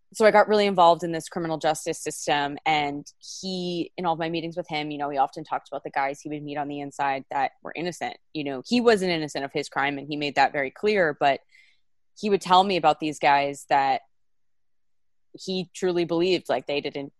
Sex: female